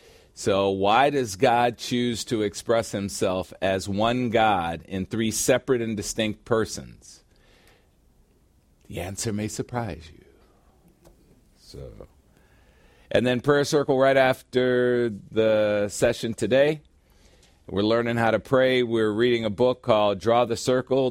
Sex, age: male, 50-69